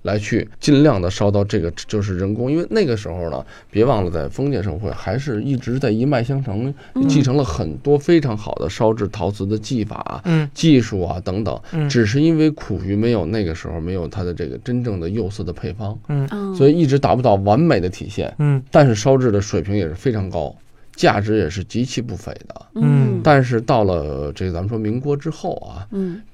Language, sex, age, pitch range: Chinese, male, 20-39, 100-135 Hz